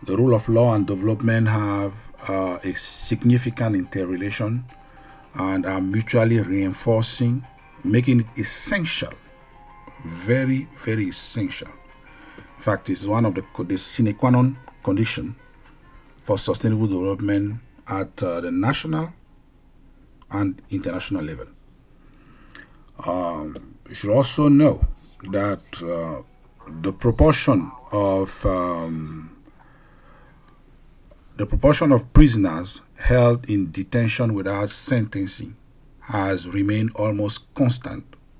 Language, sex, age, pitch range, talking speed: English, male, 50-69, 100-130 Hz, 105 wpm